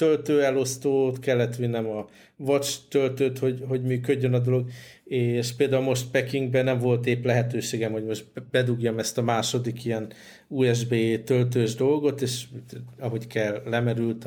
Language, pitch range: Hungarian, 115-130 Hz